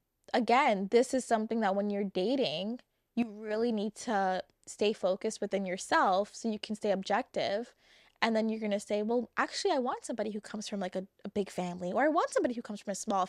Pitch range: 200-240 Hz